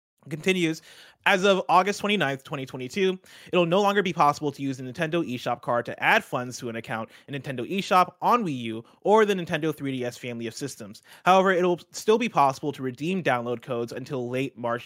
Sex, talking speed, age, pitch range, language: male, 195 wpm, 20-39, 125-175 Hz, English